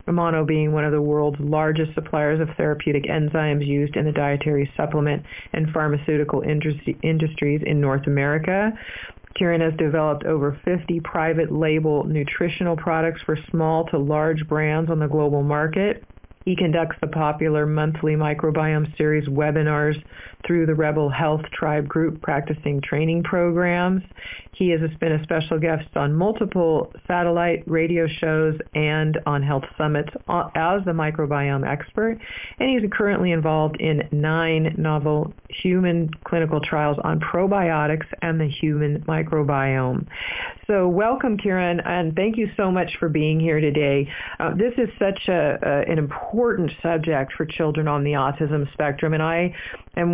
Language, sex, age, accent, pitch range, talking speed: English, female, 40-59, American, 150-170 Hz, 145 wpm